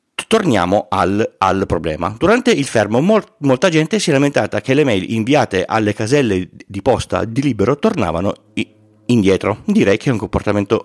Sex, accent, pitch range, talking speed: male, native, 100-135 Hz, 160 wpm